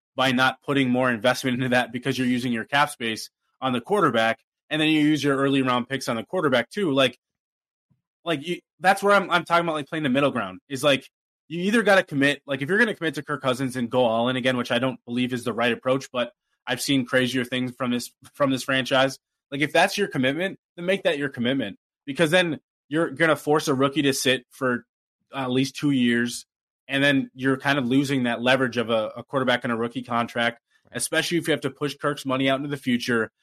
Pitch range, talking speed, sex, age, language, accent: 125-150 Hz, 240 wpm, male, 20-39, English, American